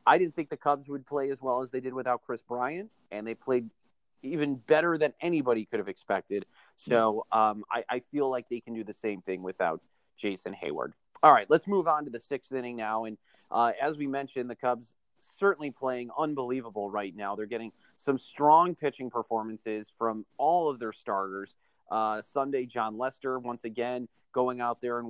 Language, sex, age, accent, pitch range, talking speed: English, male, 30-49, American, 115-135 Hz, 200 wpm